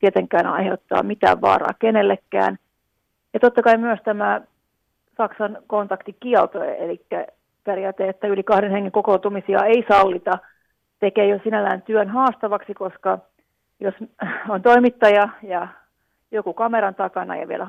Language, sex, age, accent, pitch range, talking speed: Finnish, female, 30-49, native, 195-225 Hz, 120 wpm